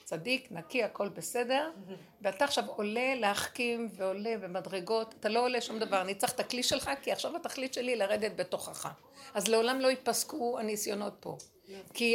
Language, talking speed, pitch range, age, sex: Hebrew, 170 wpm, 225-275 Hz, 60-79, female